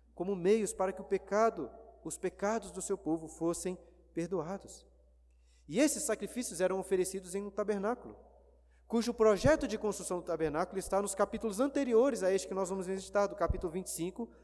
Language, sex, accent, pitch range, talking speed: Portuguese, male, Brazilian, 175-230 Hz, 165 wpm